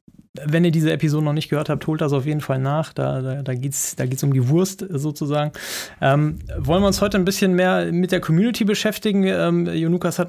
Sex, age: male, 30-49